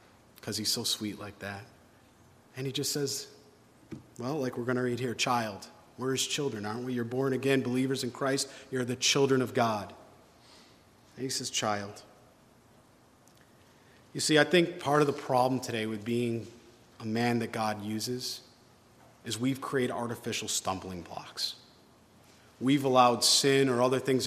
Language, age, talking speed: English, 40-59, 165 wpm